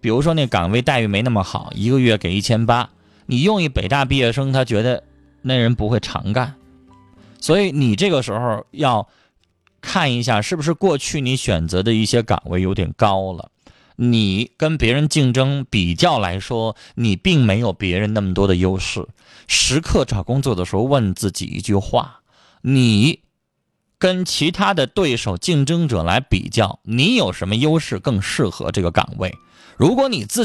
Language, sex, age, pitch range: Chinese, male, 20-39, 100-155 Hz